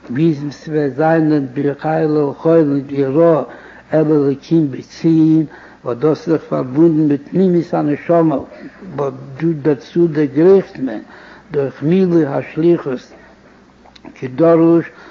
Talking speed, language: 85 wpm, Hebrew